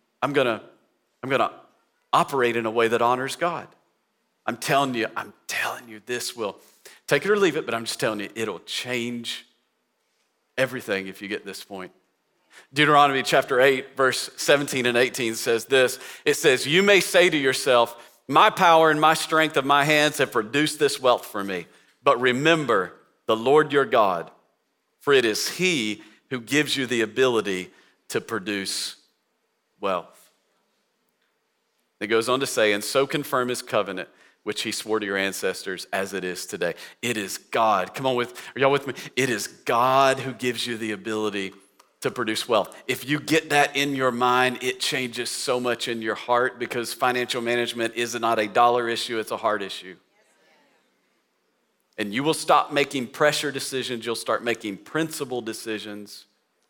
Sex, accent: male, American